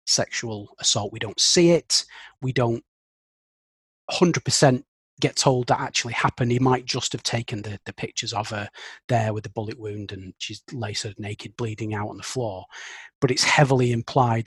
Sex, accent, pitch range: male, British, 110-135 Hz